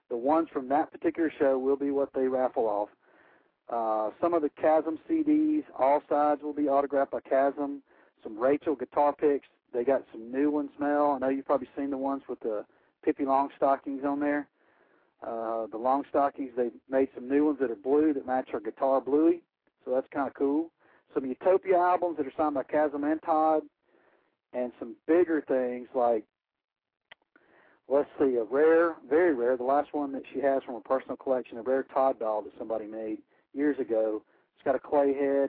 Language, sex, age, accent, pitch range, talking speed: English, male, 50-69, American, 130-150 Hz, 195 wpm